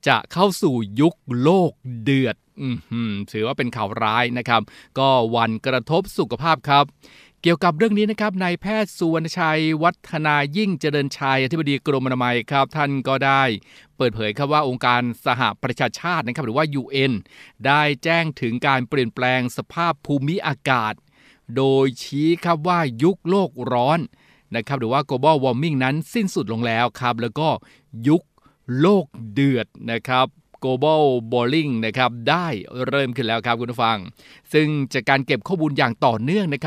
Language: Thai